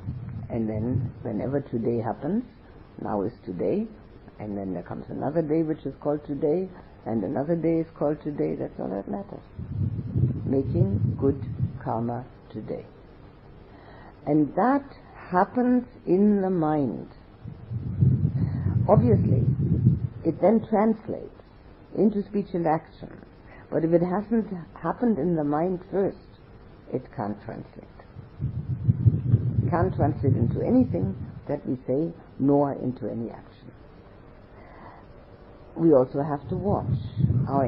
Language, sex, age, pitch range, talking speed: English, female, 50-69, 120-165 Hz, 120 wpm